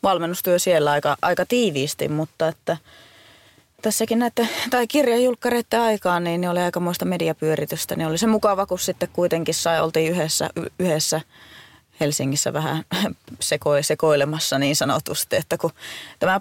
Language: Finnish